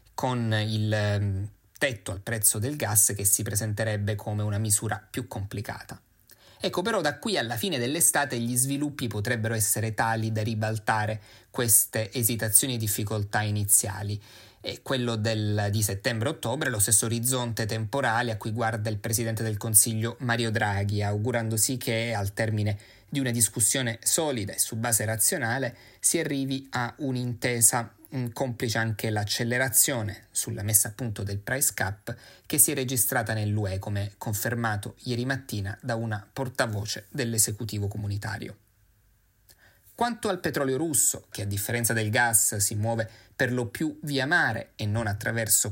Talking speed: 145 wpm